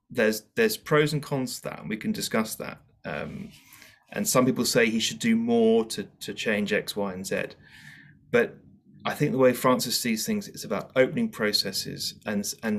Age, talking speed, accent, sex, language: 30-49, 195 wpm, British, male, English